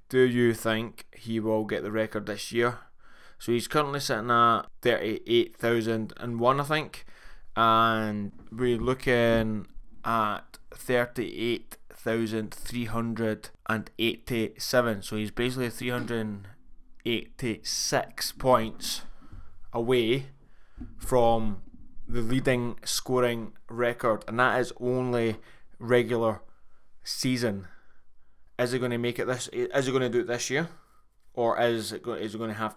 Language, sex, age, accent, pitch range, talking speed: English, male, 20-39, British, 110-125 Hz, 115 wpm